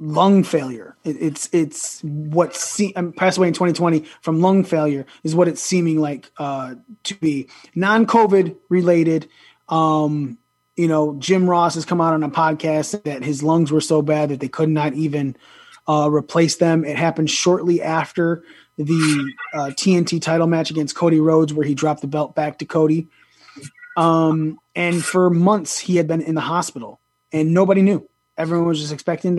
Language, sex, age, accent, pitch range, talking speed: English, male, 20-39, American, 150-175 Hz, 180 wpm